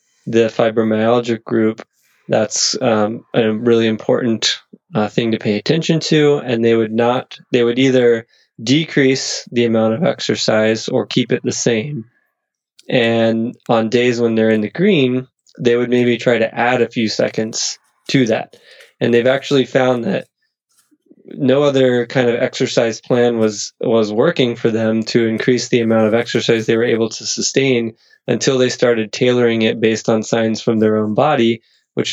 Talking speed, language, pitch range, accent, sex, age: 165 wpm, English, 110-125 Hz, American, male, 20-39